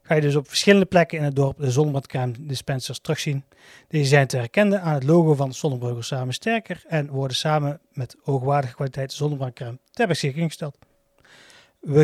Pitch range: 135-170 Hz